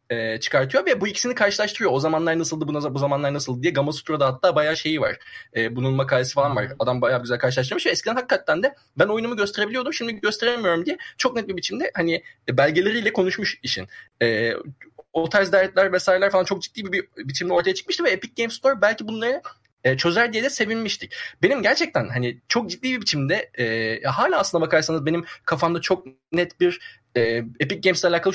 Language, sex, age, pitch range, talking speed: Turkish, male, 20-39, 135-205 Hz, 175 wpm